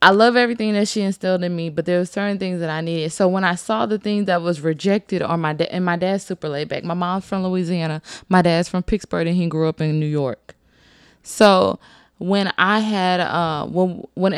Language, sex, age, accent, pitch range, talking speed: English, female, 20-39, American, 170-215 Hz, 235 wpm